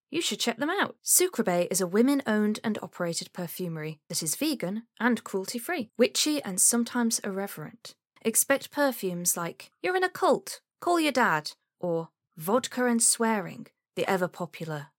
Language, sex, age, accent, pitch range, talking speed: English, female, 10-29, British, 170-240 Hz, 150 wpm